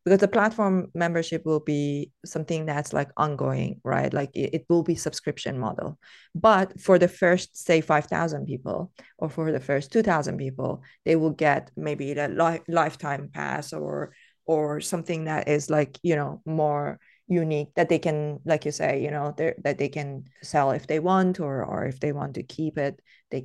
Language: English